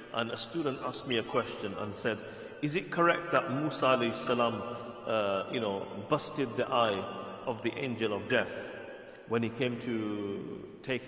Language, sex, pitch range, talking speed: English, male, 120-165 Hz, 155 wpm